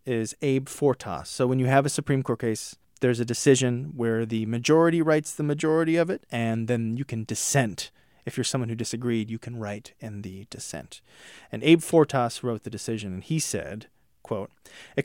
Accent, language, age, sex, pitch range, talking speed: American, English, 30-49, male, 115-155 Hz, 195 wpm